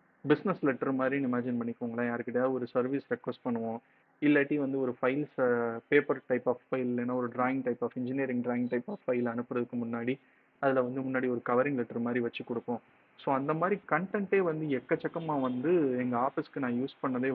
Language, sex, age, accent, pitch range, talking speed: English, male, 30-49, Indian, 125-145 Hz, 120 wpm